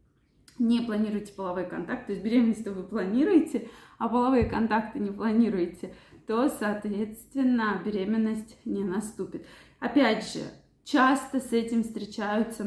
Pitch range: 200-240 Hz